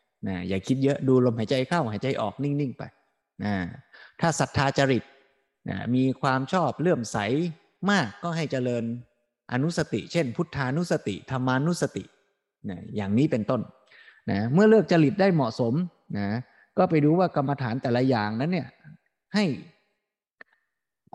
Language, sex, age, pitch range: Thai, male, 20-39, 115-160 Hz